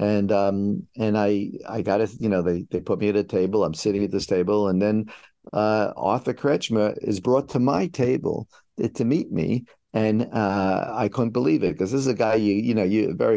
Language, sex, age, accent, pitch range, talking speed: English, male, 50-69, American, 90-110 Hz, 225 wpm